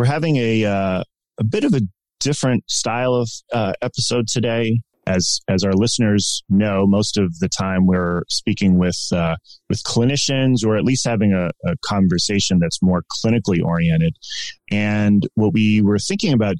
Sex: male